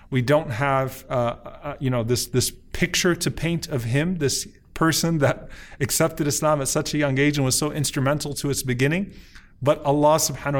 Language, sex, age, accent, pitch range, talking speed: English, male, 20-39, American, 120-140 Hz, 185 wpm